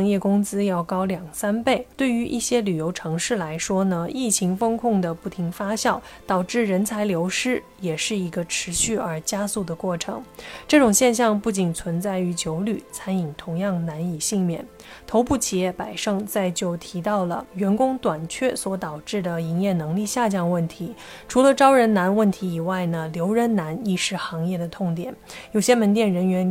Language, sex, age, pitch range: Chinese, female, 20-39, 175-225 Hz